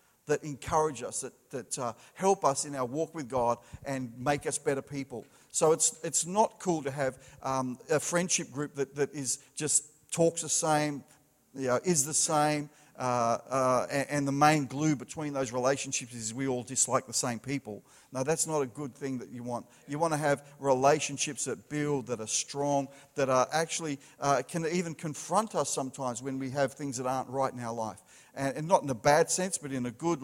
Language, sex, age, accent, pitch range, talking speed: English, male, 50-69, Australian, 130-150 Hz, 210 wpm